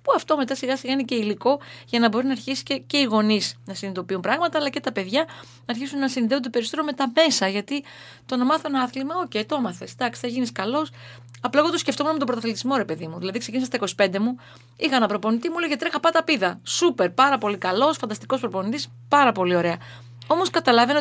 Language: Greek